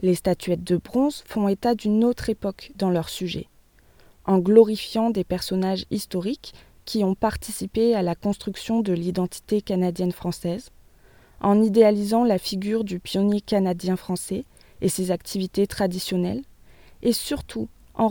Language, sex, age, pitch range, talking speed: French, female, 20-39, 180-220 Hz, 135 wpm